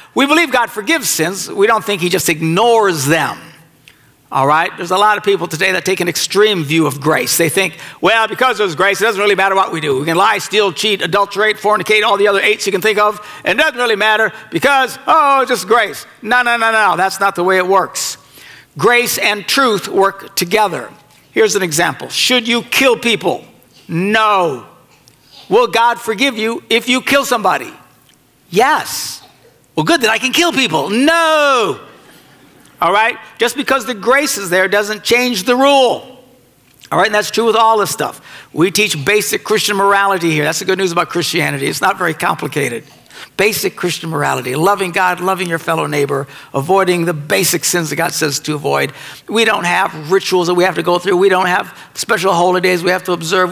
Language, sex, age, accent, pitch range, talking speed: English, male, 60-79, American, 175-225 Hz, 200 wpm